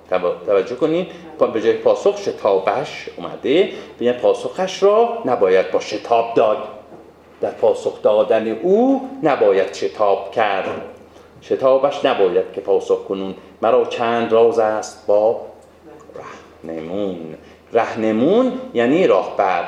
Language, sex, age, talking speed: Persian, male, 40-59, 105 wpm